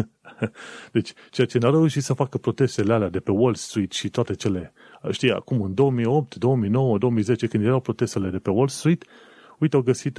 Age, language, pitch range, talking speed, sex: 30-49, Romanian, 105-135 Hz, 195 wpm, male